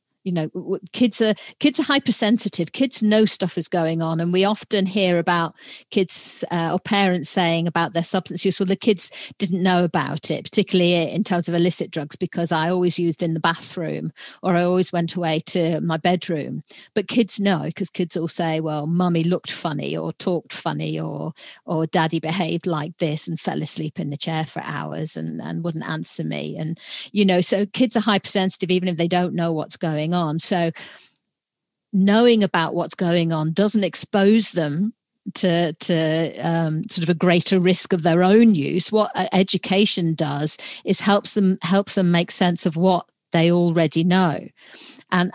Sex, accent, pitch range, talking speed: female, British, 165-195 Hz, 185 wpm